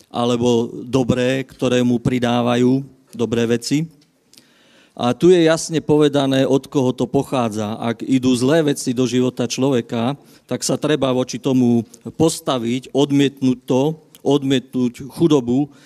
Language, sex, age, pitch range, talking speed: Slovak, male, 50-69, 125-145 Hz, 125 wpm